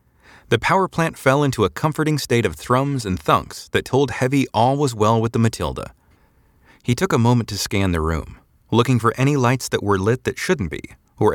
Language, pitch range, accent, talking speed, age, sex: English, 85-125 Hz, American, 210 wpm, 30-49, male